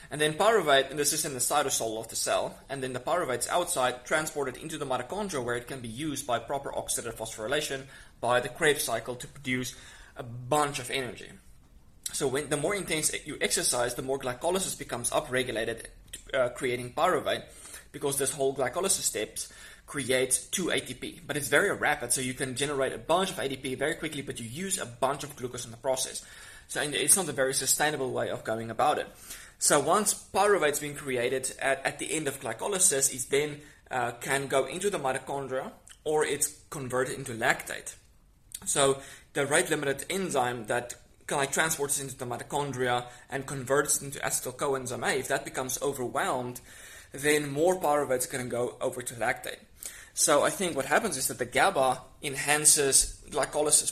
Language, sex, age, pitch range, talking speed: English, male, 20-39, 125-145 Hz, 180 wpm